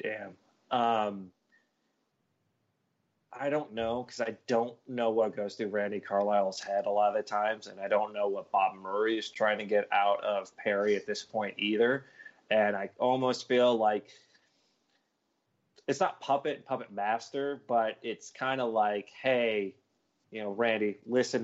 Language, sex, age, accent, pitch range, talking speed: English, male, 30-49, American, 105-120 Hz, 160 wpm